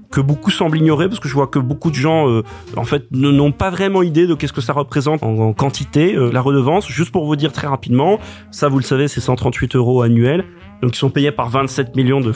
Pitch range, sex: 125-150 Hz, male